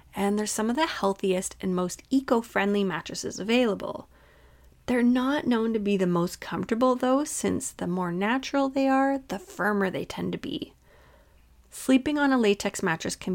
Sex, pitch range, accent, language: female, 185-265 Hz, American, English